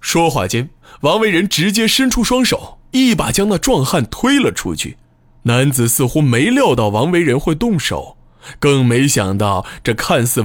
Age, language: 20-39, Chinese